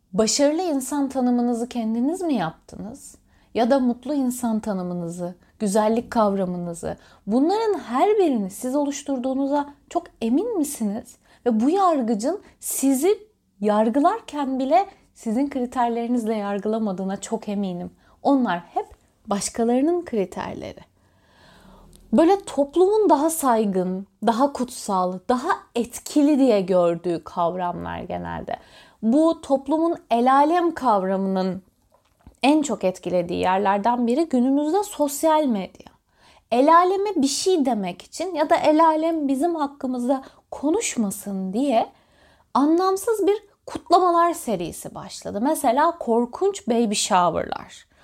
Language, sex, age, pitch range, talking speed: Turkish, female, 30-49, 215-310 Hz, 100 wpm